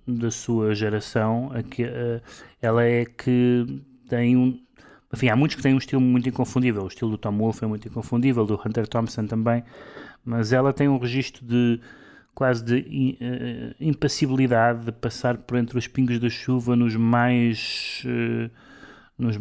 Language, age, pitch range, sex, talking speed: Portuguese, 20-39, 105-120 Hz, male, 150 wpm